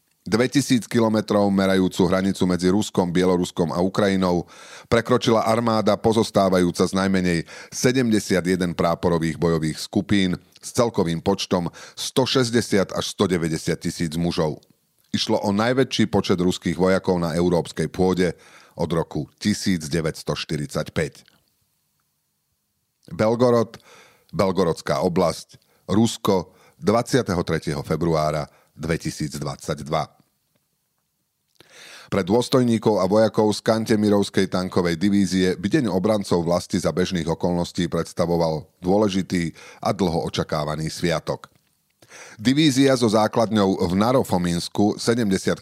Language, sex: Slovak, male